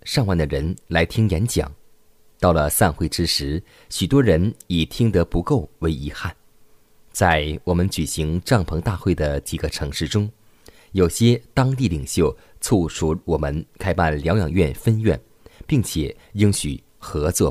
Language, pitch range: Chinese, 80-110 Hz